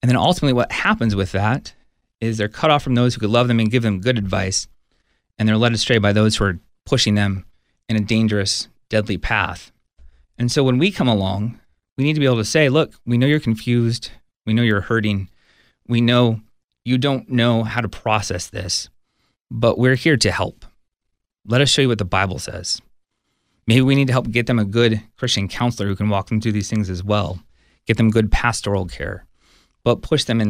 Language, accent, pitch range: English, American, 105-125 Hz